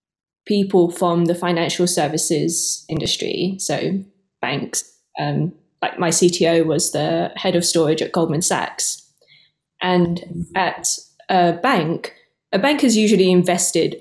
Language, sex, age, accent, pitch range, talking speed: English, female, 20-39, British, 170-195 Hz, 125 wpm